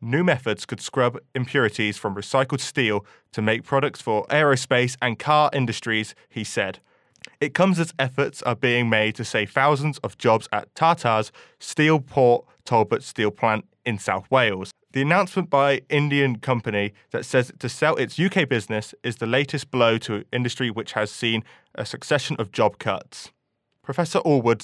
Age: 20-39